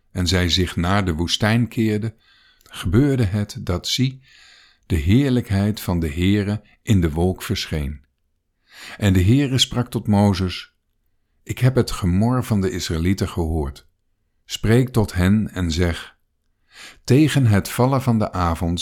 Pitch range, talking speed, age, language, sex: 85-120 Hz, 145 wpm, 50-69, Dutch, male